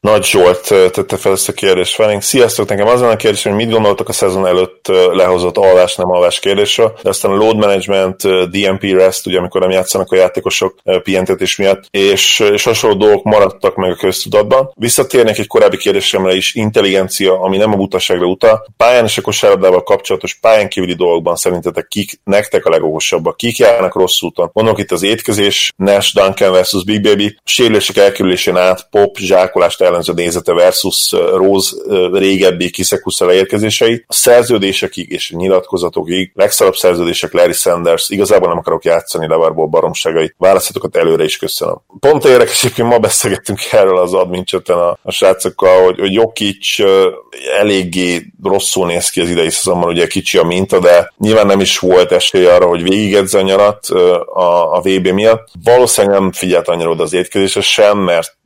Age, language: 20-39, Hungarian